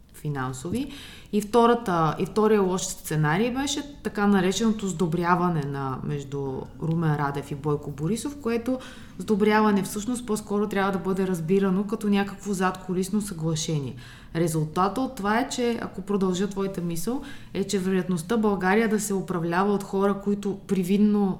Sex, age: female, 20-39